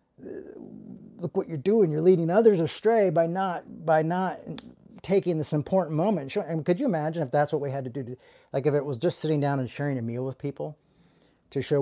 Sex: male